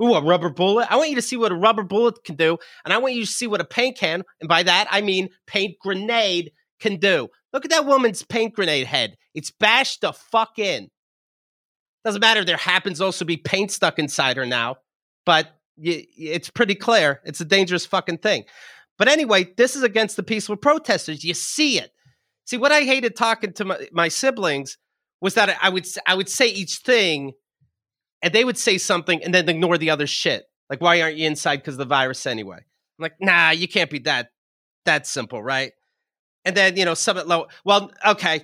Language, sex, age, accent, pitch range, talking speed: English, male, 30-49, American, 170-235 Hz, 210 wpm